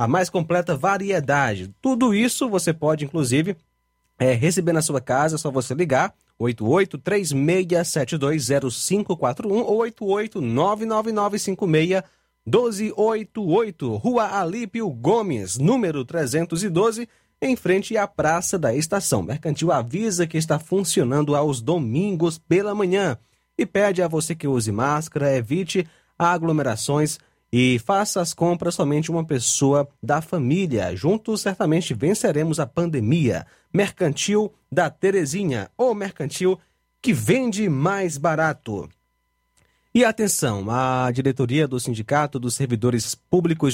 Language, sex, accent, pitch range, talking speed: Portuguese, male, Brazilian, 130-185 Hz, 110 wpm